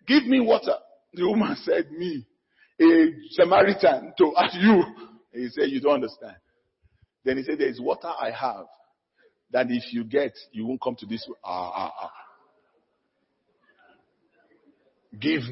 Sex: male